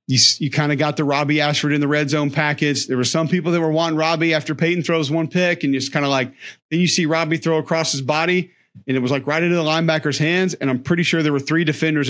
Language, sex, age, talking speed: English, male, 40-59, 280 wpm